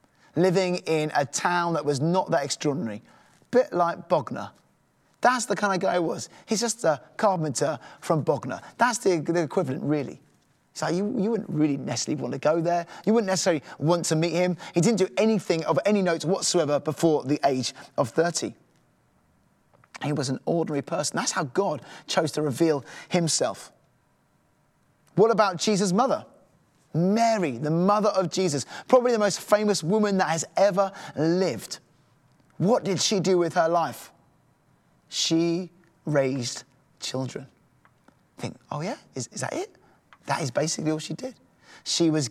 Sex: male